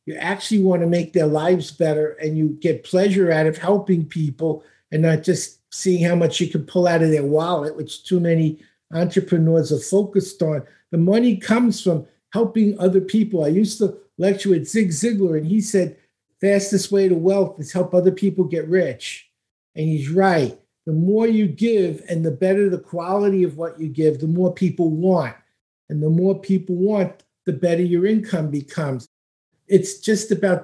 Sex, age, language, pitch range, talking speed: male, 50-69, English, 165-200 Hz, 190 wpm